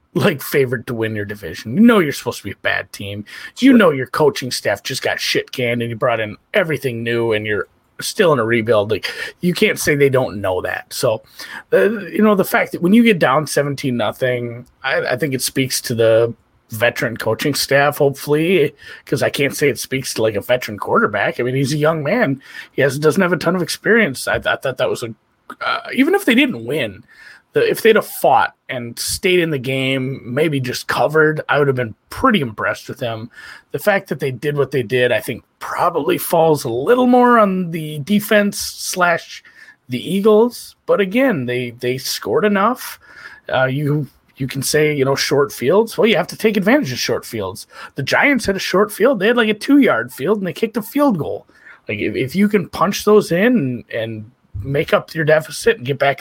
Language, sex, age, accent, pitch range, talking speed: English, male, 30-49, American, 130-215 Hz, 220 wpm